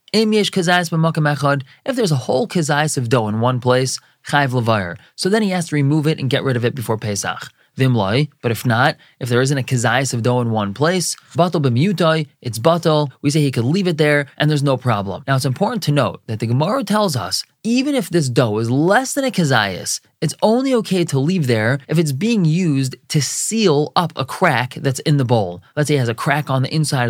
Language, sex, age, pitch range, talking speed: English, male, 20-39, 125-165 Hz, 225 wpm